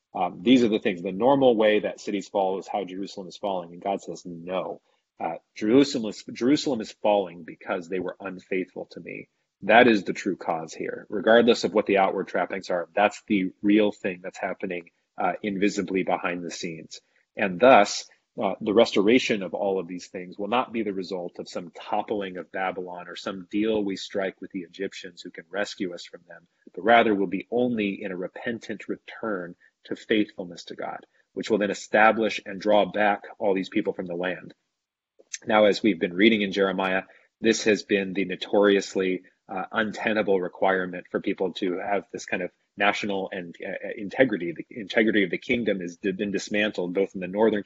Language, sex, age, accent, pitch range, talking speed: English, male, 30-49, American, 95-105 Hz, 195 wpm